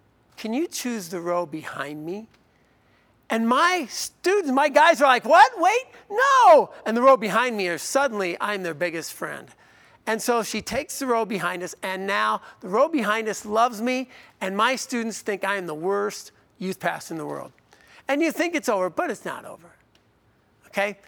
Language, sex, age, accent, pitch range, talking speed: English, male, 50-69, American, 185-245 Hz, 190 wpm